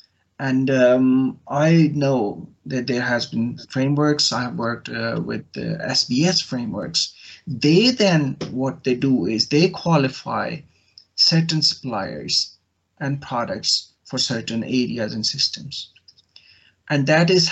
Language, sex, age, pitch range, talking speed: English, male, 30-49, 115-155 Hz, 125 wpm